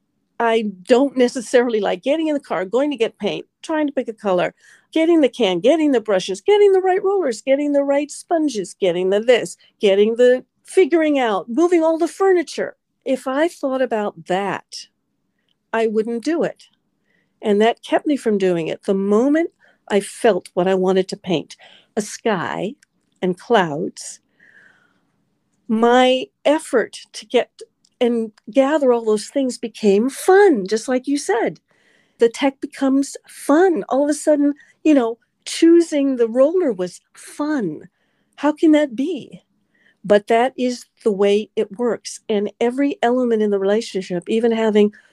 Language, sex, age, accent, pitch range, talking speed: English, female, 50-69, American, 210-290 Hz, 160 wpm